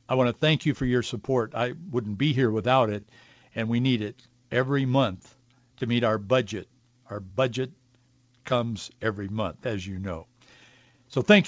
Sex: male